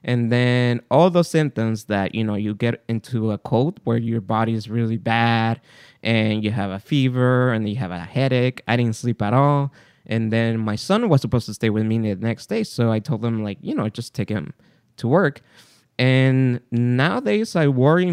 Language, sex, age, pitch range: English, male, 20-39, 110-140 Hz